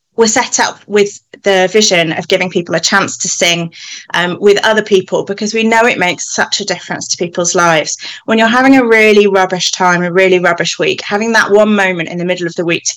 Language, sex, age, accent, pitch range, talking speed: English, female, 30-49, British, 175-215 Hz, 230 wpm